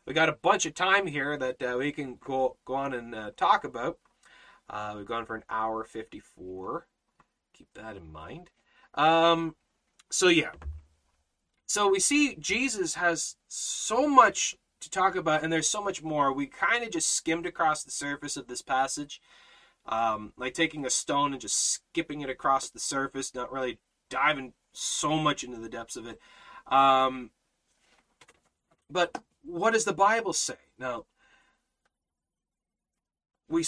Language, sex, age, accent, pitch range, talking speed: English, male, 30-49, American, 125-185 Hz, 160 wpm